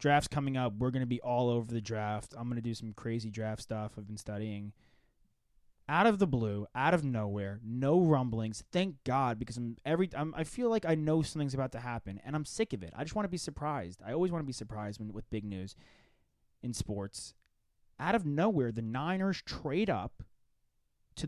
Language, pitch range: English, 110-145 Hz